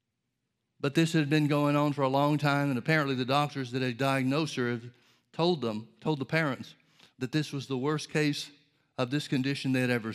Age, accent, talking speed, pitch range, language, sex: 60-79, American, 215 wpm, 125-145 Hz, English, male